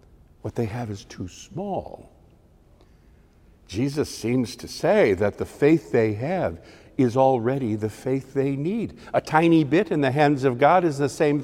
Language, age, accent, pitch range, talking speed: English, 60-79, American, 125-160 Hz, 170 wpm